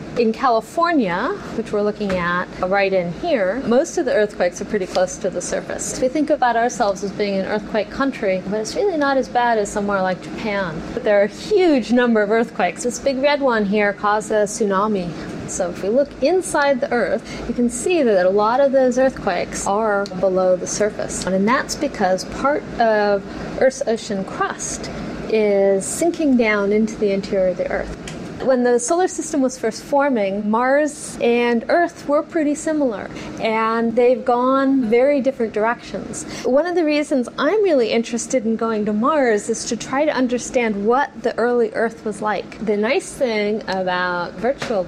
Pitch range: 200-265 Hz